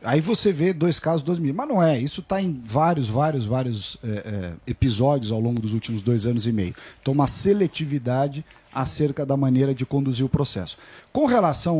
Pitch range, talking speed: 130-180 Hz, 200 wpm